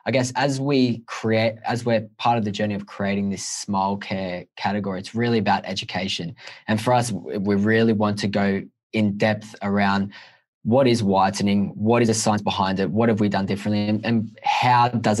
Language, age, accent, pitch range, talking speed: English, 10-29, Australian, 100-110 Hz, 195 wpm